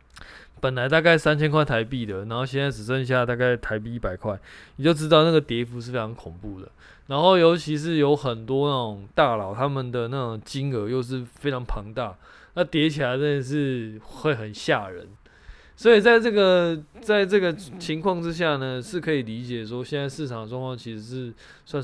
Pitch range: 115-150 Hz